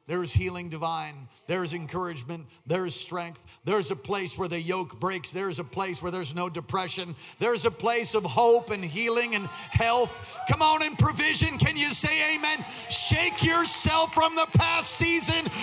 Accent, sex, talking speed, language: American, male, 170 wpm, English